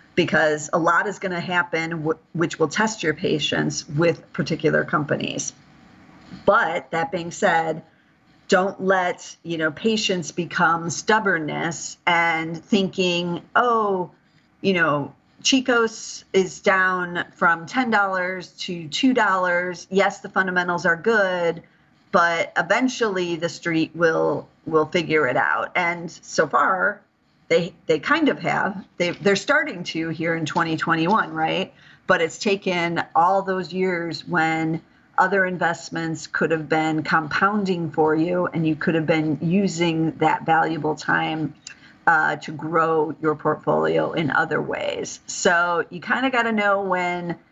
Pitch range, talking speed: 160-195 Hz, 140 wpm